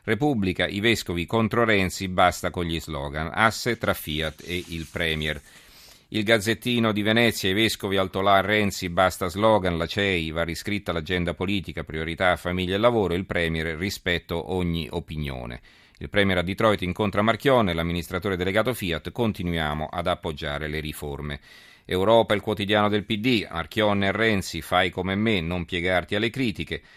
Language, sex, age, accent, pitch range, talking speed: Italian, male, 40-59, native, 85-105 Hz, 155 wpm